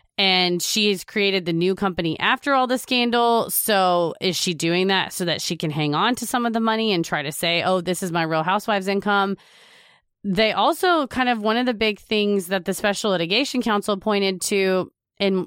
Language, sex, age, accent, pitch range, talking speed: English, female, 30-49, American, 180-225 Hz, 210 wpm